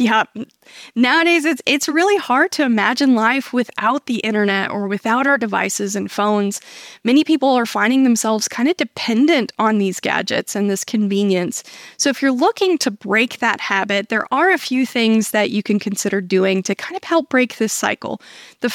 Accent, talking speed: American, 185 wpm